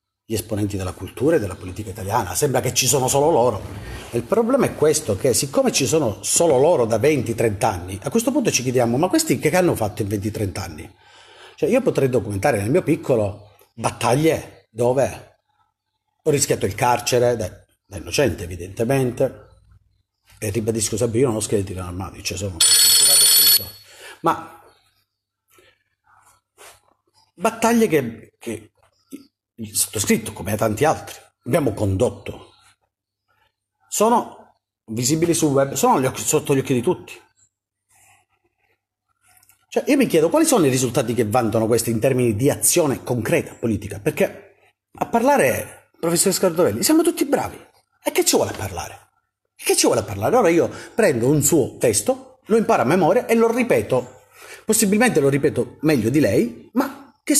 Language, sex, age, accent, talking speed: Italian, male, 40-59, native, 155 wpm